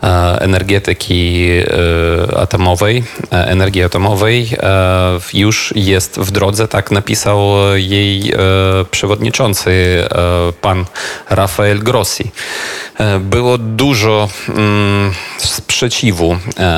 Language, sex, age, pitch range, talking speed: Polish, male, 30-49, 90-105 Hz, 65 wpm